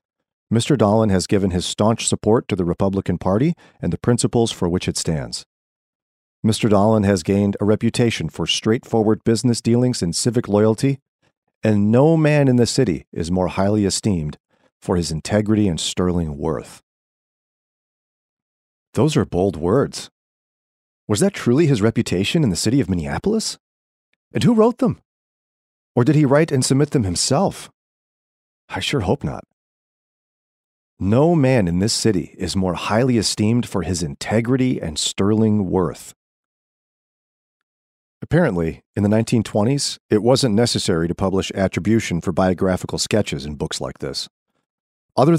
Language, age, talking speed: English, 40-59, 145 wpm